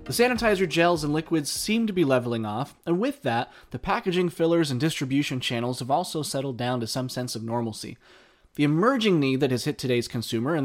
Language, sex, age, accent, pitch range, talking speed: English, male, 20-39, American, 120-160 Hz, 210 wpm